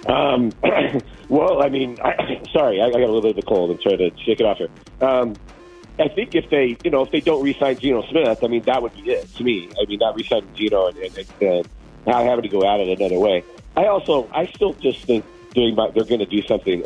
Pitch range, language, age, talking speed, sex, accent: 100-140 Hz, English, 40-59, 245 wpm, male, American